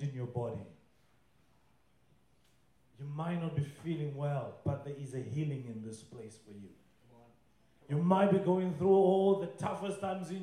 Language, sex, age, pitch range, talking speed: English, male, 30-49, 165-210 Hz, 165 wpm